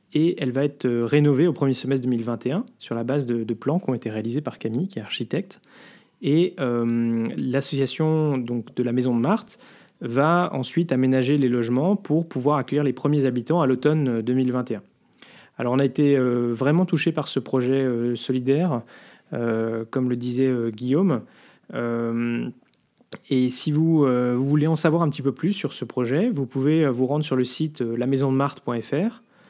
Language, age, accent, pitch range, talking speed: French, 20-39, French, 120-150 Hz, 180 wpm